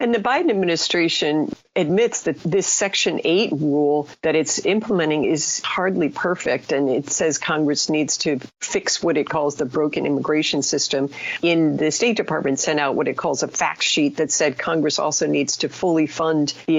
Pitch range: 145-170 Hz